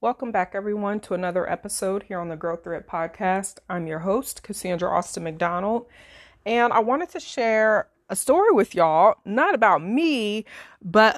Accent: American